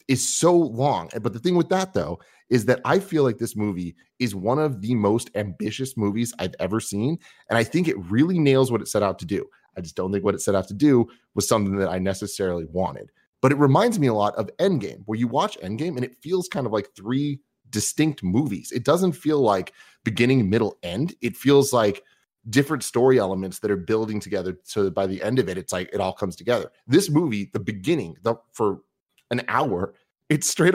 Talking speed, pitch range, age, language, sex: 225 wpm, 100-145 Hz, 30-49, English, male